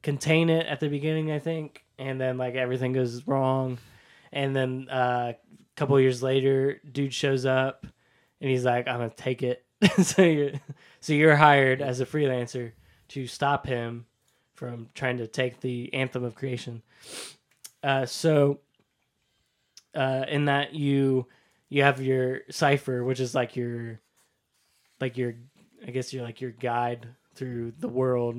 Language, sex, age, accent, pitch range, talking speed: English, male, 20-39, American, 125-140 Hz, 160 wpm